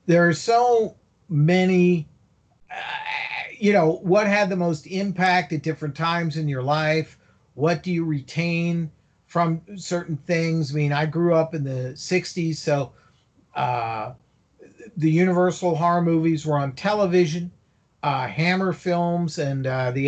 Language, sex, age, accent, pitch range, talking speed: English, male, 50-69, American, 150-180 Hz, 145 wpm